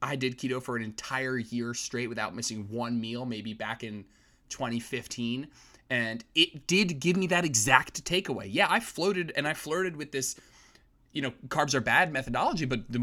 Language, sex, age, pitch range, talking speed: English, male, 20-39, 115-155 Hz, 185 wpm